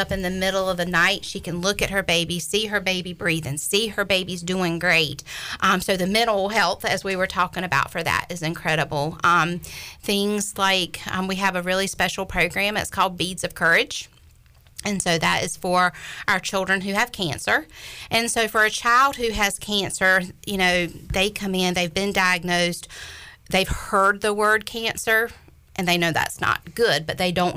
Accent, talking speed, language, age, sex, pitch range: American, 200 wpm, English, 40-59, female, 170-200 Hz